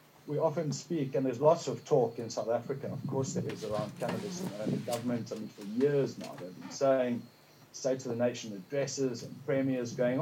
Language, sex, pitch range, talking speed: English, male, 125-145 Hz, 210 wpm